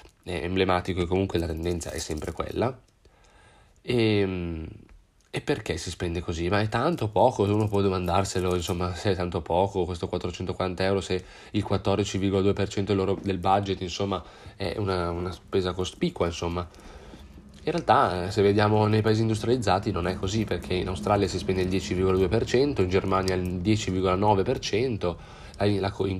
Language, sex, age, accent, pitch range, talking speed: Italian, male, 20-39, native, 90-100 Hz, 150 wpm